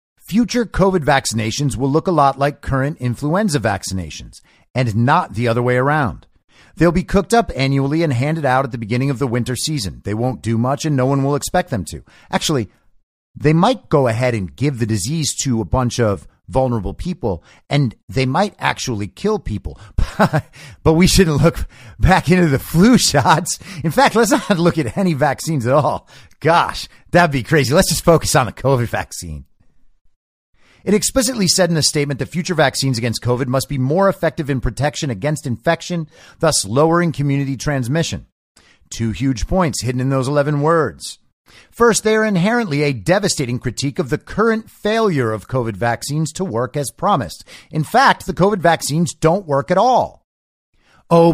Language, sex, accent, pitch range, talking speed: English, male, American, 125-175 Hz, 180 wpm